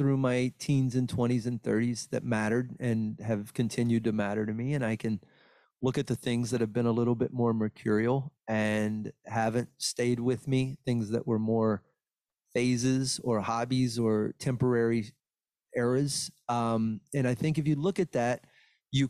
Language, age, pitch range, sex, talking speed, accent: English, 30-49, 115-130 Hz, male, 175 wpm, American